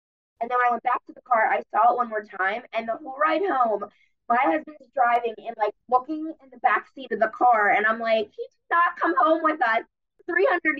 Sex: female